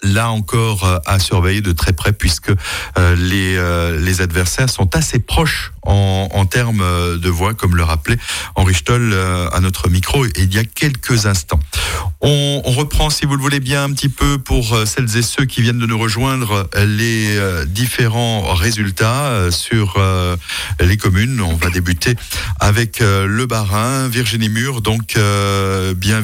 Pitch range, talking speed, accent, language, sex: 95-115 Hz, 160 wpm, French, French, male